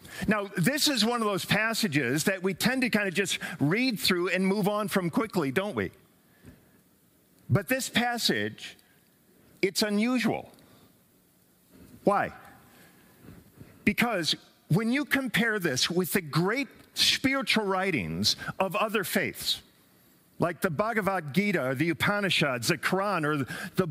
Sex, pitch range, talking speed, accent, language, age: male, 185-235 Hz, 135 wpm, American, English, 50-69